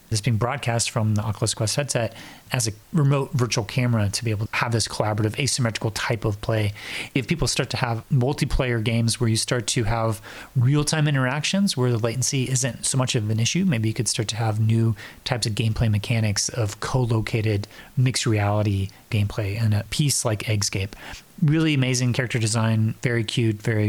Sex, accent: male, American